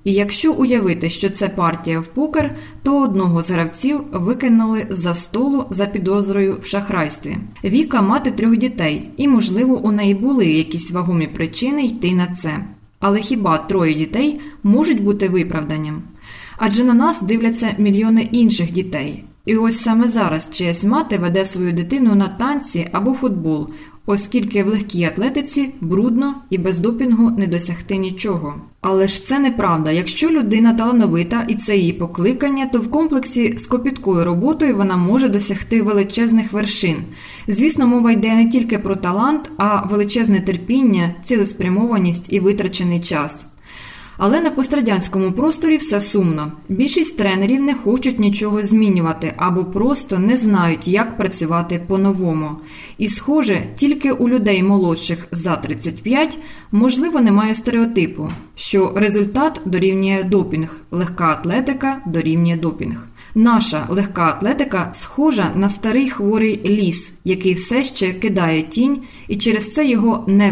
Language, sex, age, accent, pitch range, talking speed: Ukrainian, female, 20-39, native, 175-240 Hz, 140 wpm